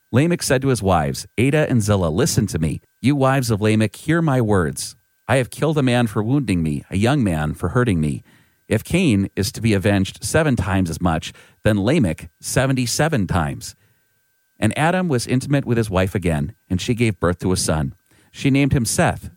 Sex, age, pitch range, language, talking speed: male, 40-59, 95-130 Hz, English, 200 wpm